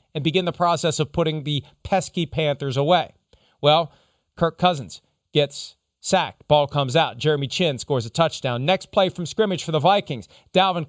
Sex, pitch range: male, 140-205 Hz